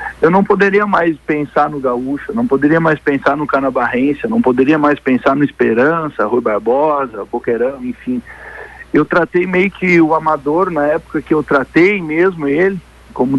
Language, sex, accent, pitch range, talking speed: Portuguese, male, Brazilian, 130-180 Hz, 165 wpm